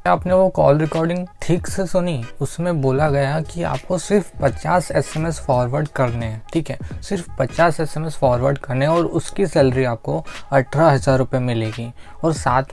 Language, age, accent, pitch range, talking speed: Hindi, 20-39, native, 130-165 Hz, 175 wpm